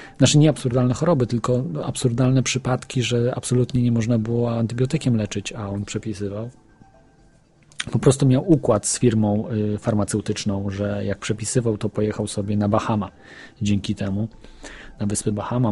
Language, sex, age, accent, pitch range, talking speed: Polish, male, 40-59, native, 105-135 Hz, 145 wpm